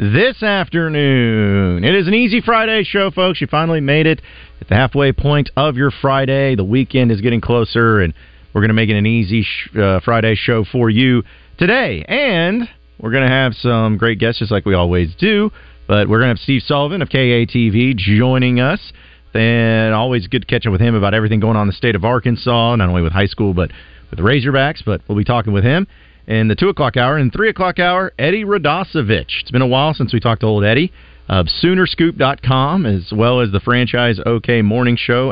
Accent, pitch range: American, 105-150 Hz